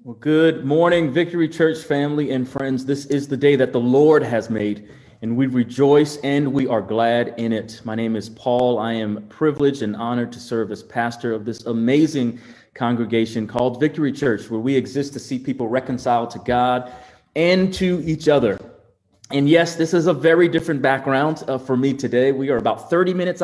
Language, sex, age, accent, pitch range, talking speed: English, male, 30-49, American, 125-155 Hz, 195 wpm